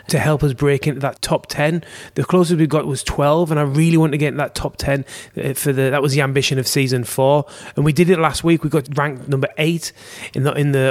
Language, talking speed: English, 265 wpm